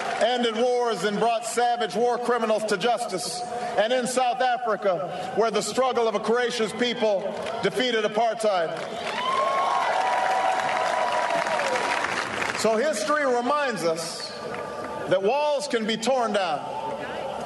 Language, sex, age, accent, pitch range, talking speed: English, male, 50-69, American, 215-255 Hz, 110 wpm